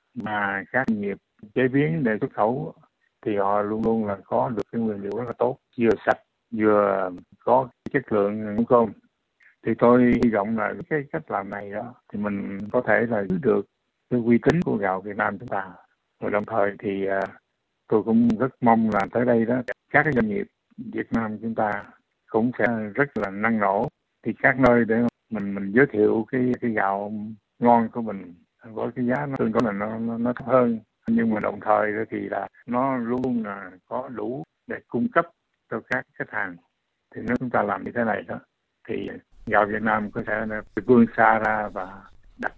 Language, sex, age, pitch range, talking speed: Vietnamese, male, 60-79, 105-120 Hz, 205 wpm